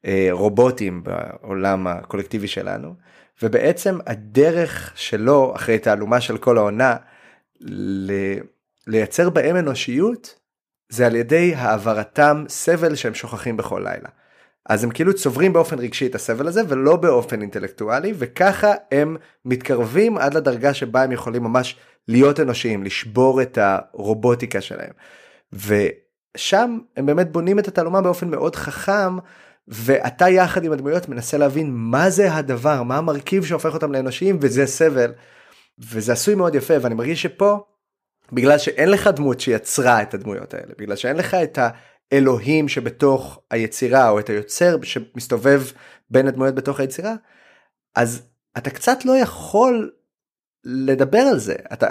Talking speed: 135 wpm